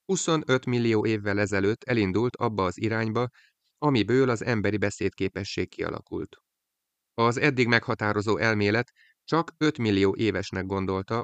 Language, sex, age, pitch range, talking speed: Hungarian, male, 30-49, 95-120 Hz, 115 wpm